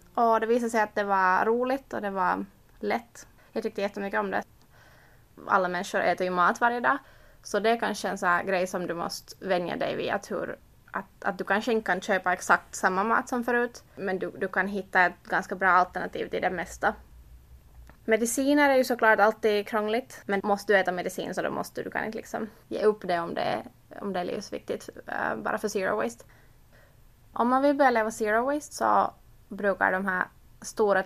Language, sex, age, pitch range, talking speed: Swedish, female, 20-39, 185-215 Hz, 200 wpm